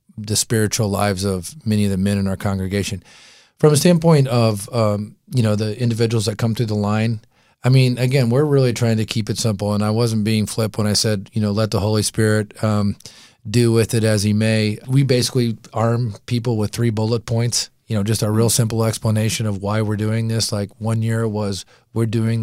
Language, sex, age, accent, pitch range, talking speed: English, male, 40-59, American, 105-115 Hz, 220 wpm